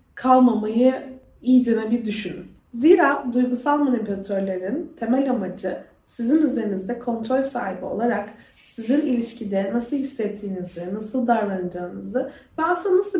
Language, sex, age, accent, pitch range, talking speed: Turkish, female, 30-49, native, 230-285 Hz, 105 wpm